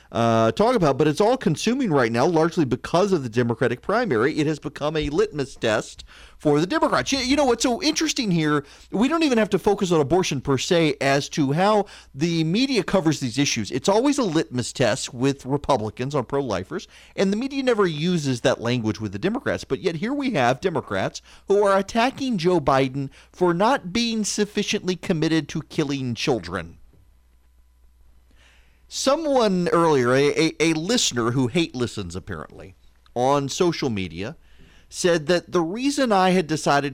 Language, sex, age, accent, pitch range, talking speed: English, male, 40-59, American, 105-180 Hz, 175 wpm